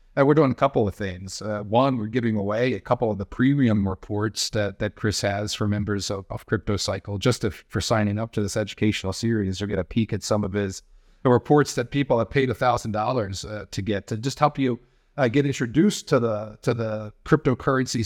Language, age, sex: English, 40-59, male